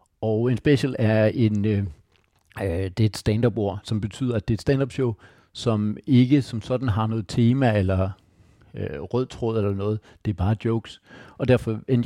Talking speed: 185 wpm